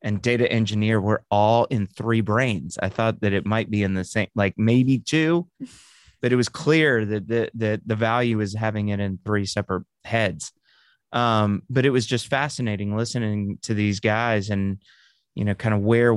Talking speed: 195 wpm